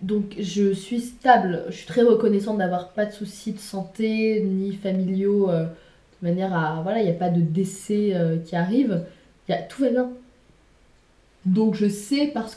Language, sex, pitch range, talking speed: French, female, 190-235 Hz, 185 wpm